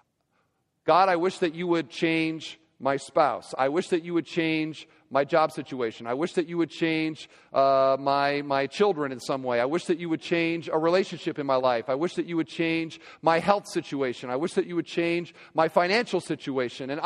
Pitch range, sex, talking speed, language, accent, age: 165-235 Hz, male, 215 wpm, English, American, 40-59